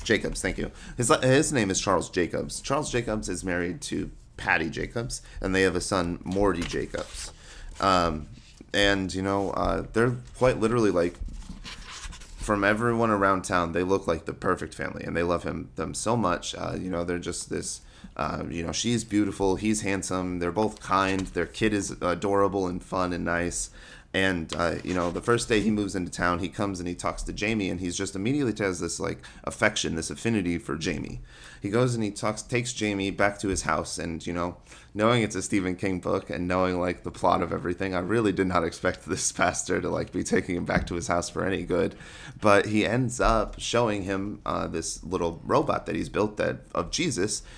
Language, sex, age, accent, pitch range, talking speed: English, male, 30-49, American, 85-105 Hz, 210 wpm